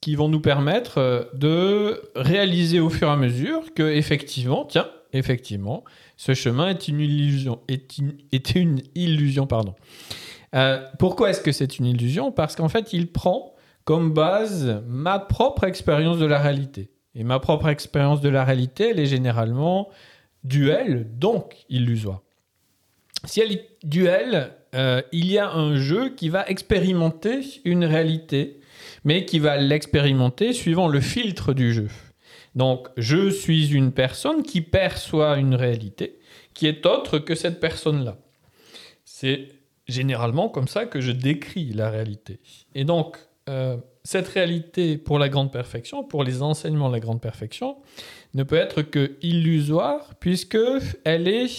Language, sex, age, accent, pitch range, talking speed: French, male, 40-59, French, 130-170 Hz, 150 wpm